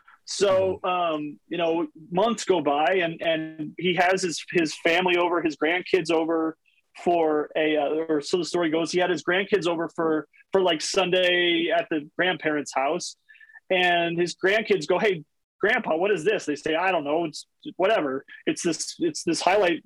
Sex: male